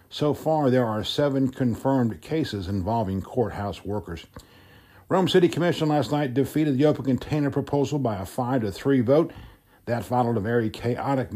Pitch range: 110-135 Hz